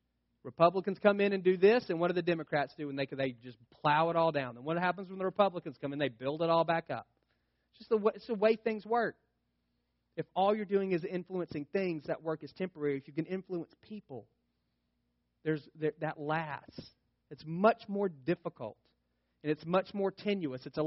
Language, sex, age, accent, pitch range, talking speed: English, male, 30-49, American, 135-185 Hz, 210 wpm